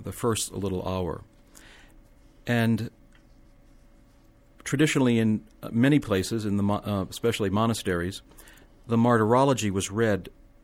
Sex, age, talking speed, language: male, 50-69, 100 wpm, English